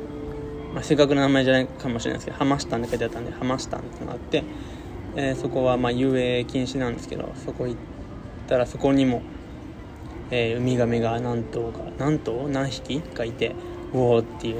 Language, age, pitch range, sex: Japanese, 20-39, 120-135 Hz, male